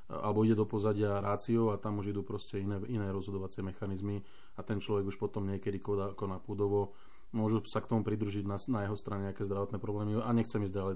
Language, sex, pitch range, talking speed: Slovak, male, 100-115 Hz, 215 wpm